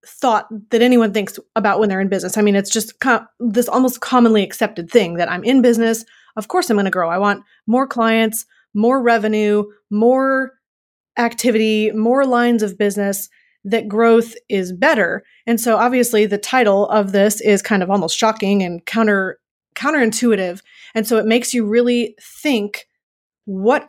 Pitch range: 200-235 Hz